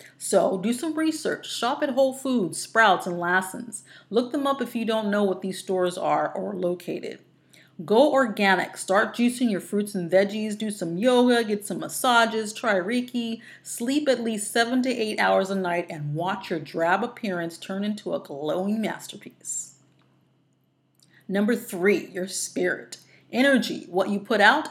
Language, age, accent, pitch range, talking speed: English, 30-49, American, 180-230 Hz, 170 wpm